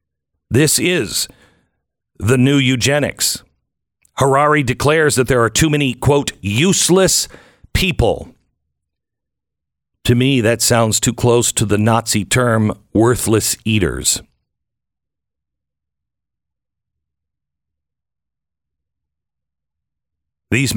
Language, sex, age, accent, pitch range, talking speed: English, male, 50-69, American, 85-125 Hz, 80 wpm